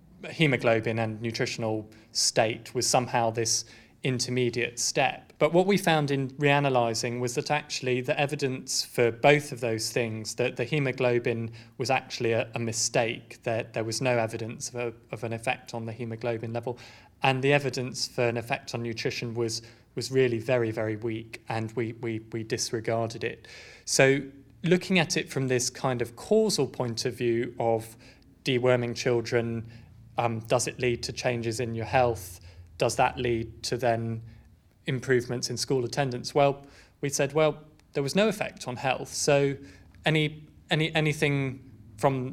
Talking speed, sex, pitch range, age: 160 wpm, male, 115-140 Hz, 20-39